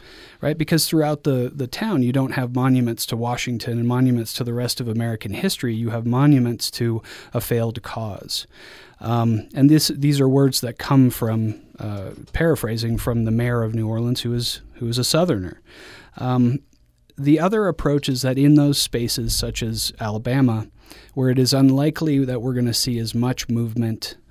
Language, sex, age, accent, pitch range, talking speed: English, male, 30-49, American, 110-130 Hz, 185 wpm